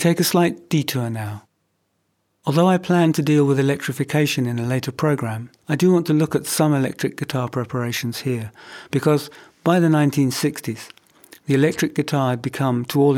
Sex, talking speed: male, 175 wpm